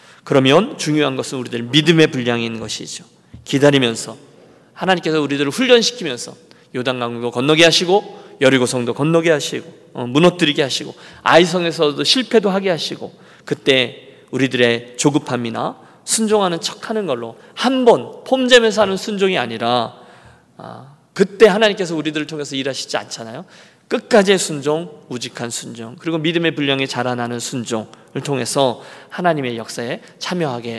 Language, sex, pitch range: Korean, male, 125-180 Hz